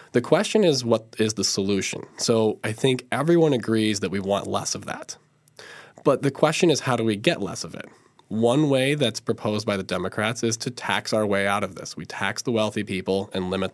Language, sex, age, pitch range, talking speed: English, male, 20-39, 100-135 Hz, 225 wpm